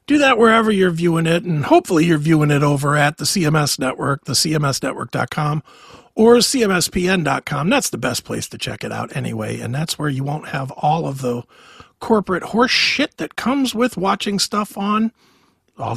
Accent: American